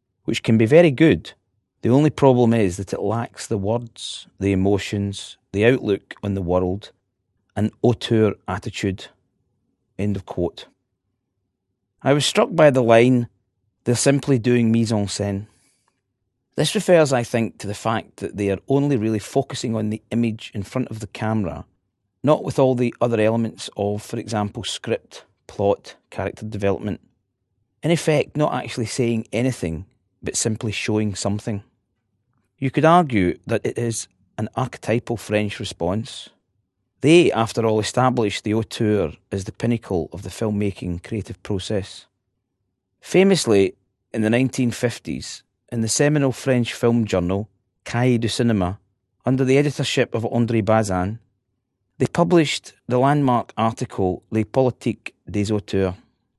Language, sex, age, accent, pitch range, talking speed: English, male, 40-59, British, 100-125 Hz, 140 wpm